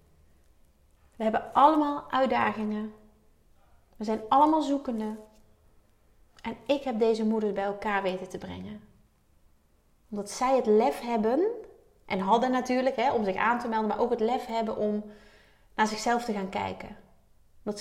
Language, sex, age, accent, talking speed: Dutch, female, 30-49, Dutch, 145 wpm